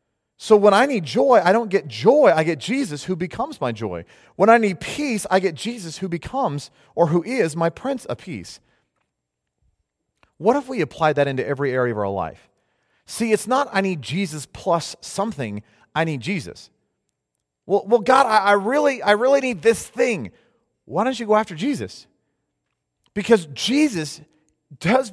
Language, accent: English, American